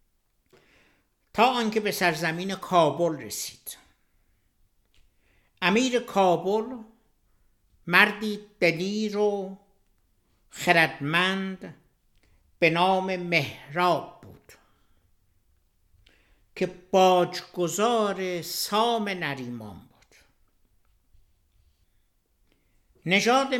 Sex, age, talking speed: male, 60-79, 55 wpm